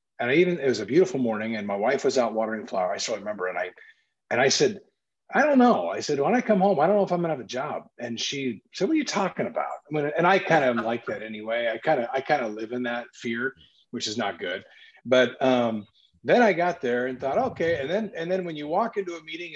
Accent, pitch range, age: American, 115-155 Hz, 40-59